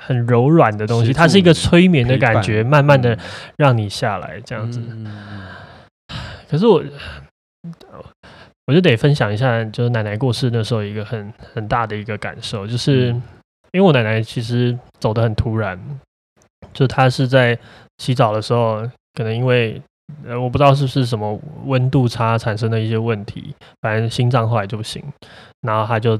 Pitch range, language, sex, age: 110-135 Hz, Chinese, male, 20-39